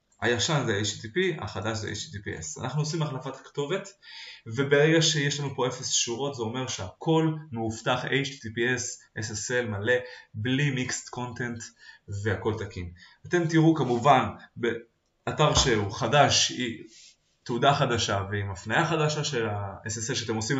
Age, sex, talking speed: 20-39, male, 125 wpm